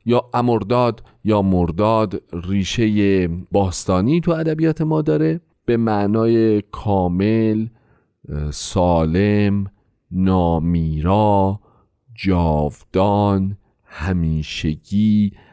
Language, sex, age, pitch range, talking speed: Persian, male, 40-59, 90-115 Hz, 65 wpm